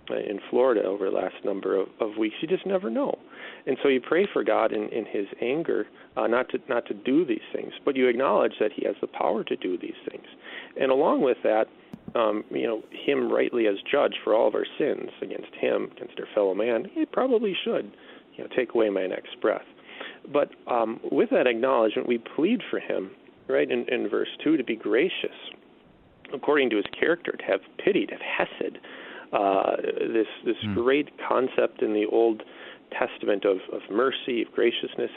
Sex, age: male, 40-59